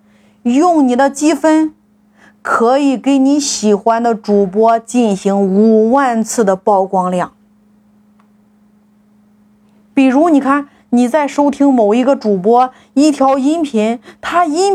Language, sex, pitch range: Chinese, female, 210-280 Hz